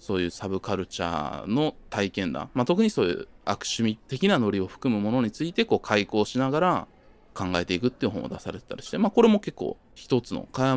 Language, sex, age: Japanese, male, 20-39